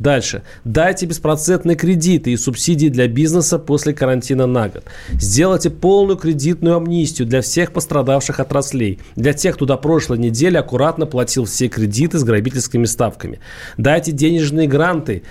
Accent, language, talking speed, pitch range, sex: native, Russian, 140 wpm, 125-165 Hz, male